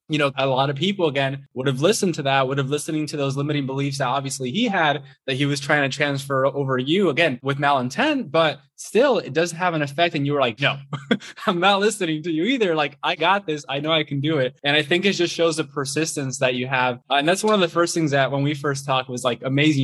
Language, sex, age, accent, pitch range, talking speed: English, male, 20-39, American, 135-165 Hz, 265 wpm